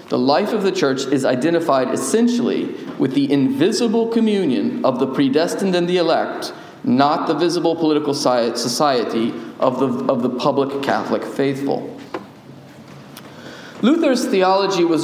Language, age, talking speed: English, 40-59, 130 wpm